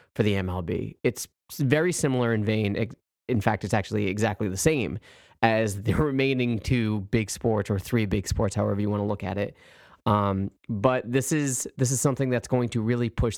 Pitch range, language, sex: 100-120 Hz, English, male